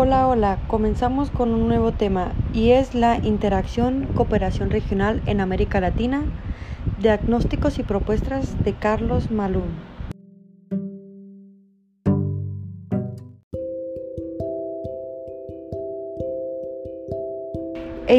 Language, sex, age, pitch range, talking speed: Spanish, female, 30-49, 190-235 Hz, 75 wpm